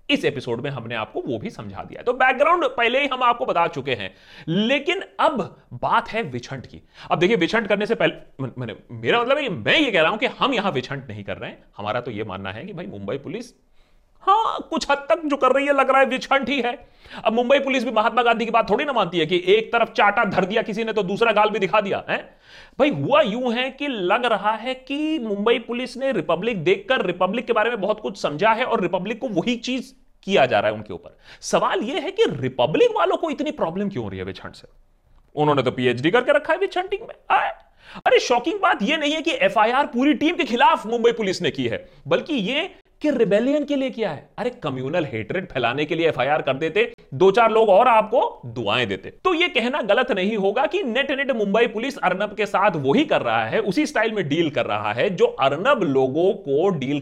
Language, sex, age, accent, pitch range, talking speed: Hindi, male, 30-49, native, 165-265 Hz, 160 wpm